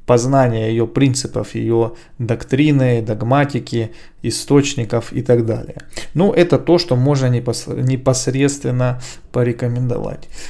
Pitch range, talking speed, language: 125-155 Hz, 95 wpm, Russian